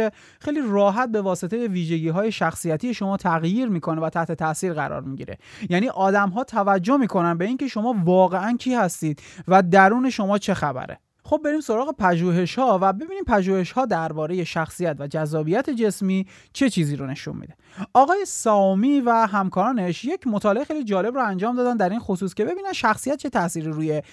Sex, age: male, 30-49